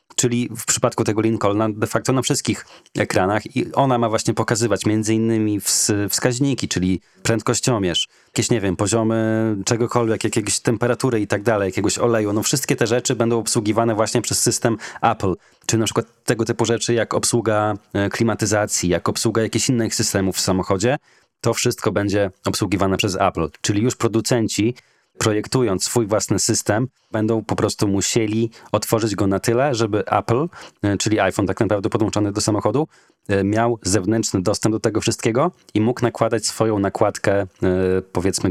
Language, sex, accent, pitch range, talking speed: Polish, male, native, 95-115 Hz, 155 wpm